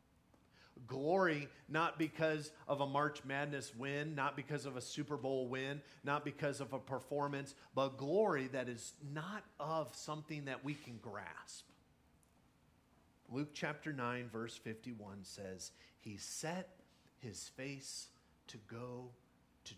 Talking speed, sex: 135 wpm, male